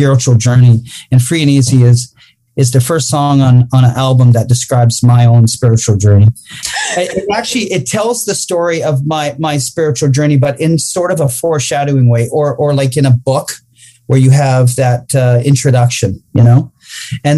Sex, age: male, 40-59